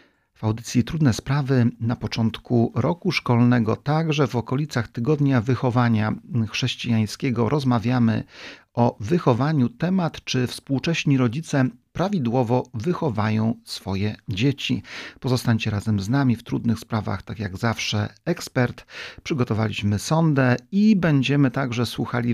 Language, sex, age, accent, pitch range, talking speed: Polish, male, 40-59, native, 115-135 Hz, 115 wpm